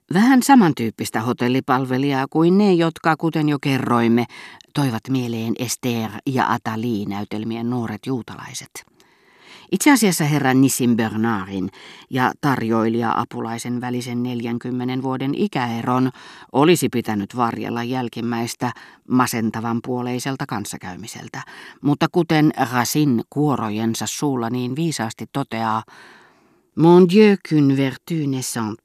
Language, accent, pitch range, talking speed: Finnish, native, 115-140 Hz, 100 wpm